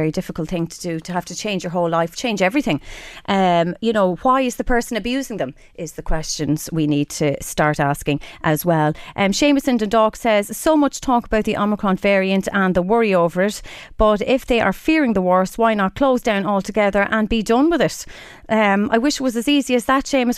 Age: 30-49